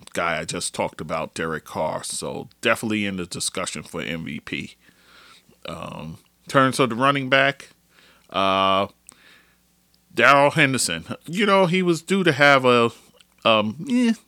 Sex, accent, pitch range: male, American, 90-120 Hz